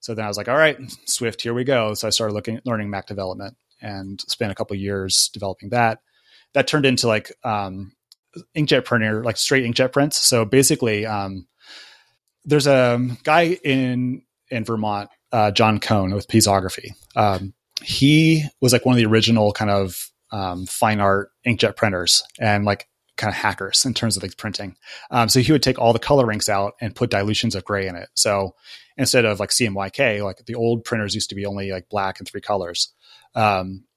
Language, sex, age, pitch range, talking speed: English, male, 30-49, 100-125 Hz, 200 wpm